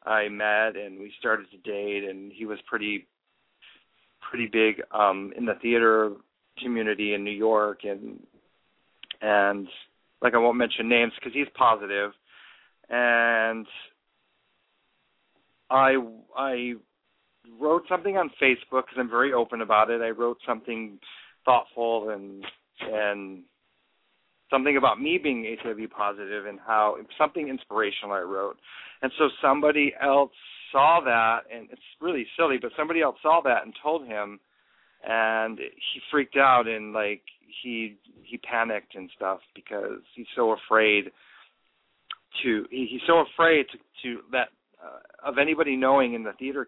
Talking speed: 140 wpm